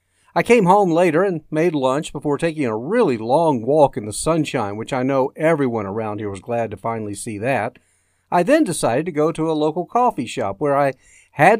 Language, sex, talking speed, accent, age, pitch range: English, male, 210 wpm, American, 50-69, 125-185 Hz